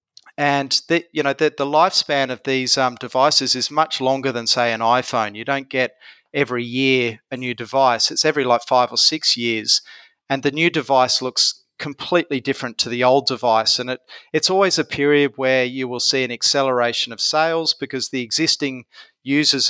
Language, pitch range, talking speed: English, 125-145 Hz, 190 wpm